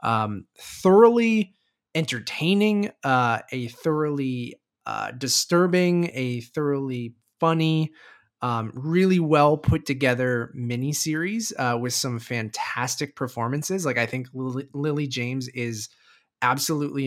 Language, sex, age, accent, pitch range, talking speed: English, male, 20-39, American, 120-150 Hz, 105 wpm